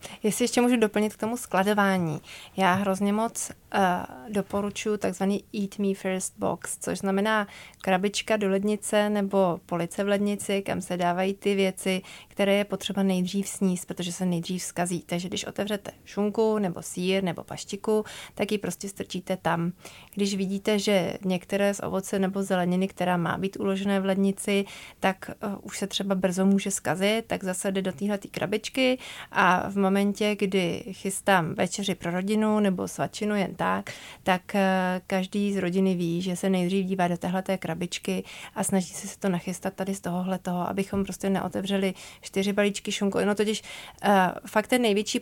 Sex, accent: female, native